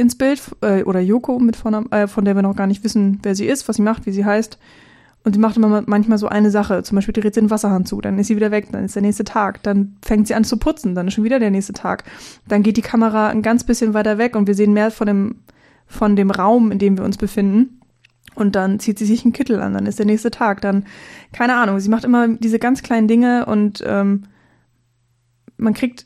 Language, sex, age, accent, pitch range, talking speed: German, female, 20-39, German, 205-230 Hz, 250 wpm